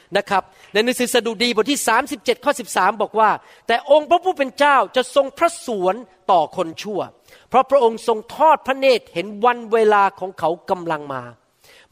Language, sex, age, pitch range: Thai, male, 40-59, 195-255 Hz